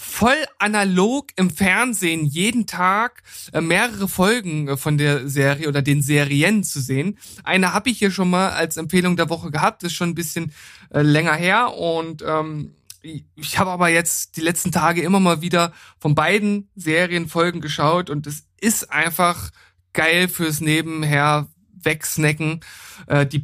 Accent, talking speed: German, 155 wpm